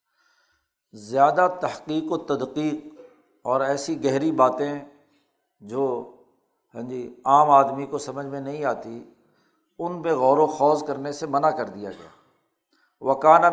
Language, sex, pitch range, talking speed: Urdu, male, 130-150 Hz, 135 wpm